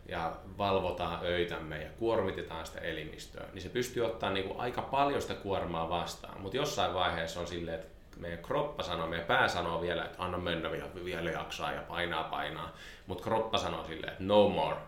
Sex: male